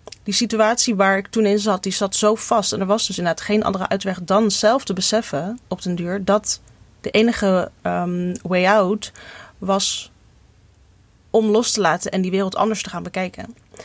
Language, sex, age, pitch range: Dutch, female, 30-49, 185-220 Hz